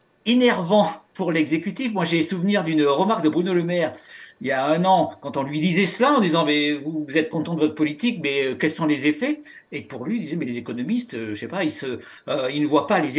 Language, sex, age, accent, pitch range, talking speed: French, male, 50-69, French, 160-235 Hz, 265 wpm